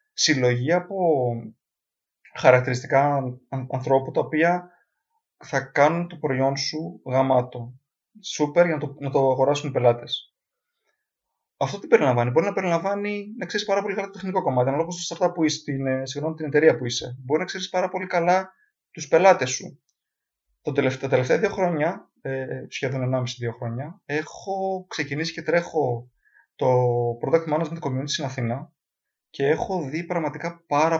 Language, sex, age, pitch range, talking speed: Greek, male, 30-49, 130-170 Hz, 155 wpm